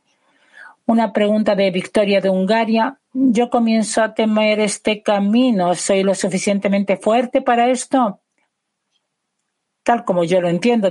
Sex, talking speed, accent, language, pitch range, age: female, 125 wpm, Spanish, Hebrew, 195-240 Hz, 50-69